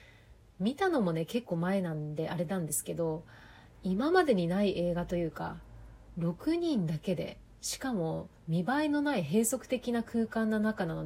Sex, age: female, 30-49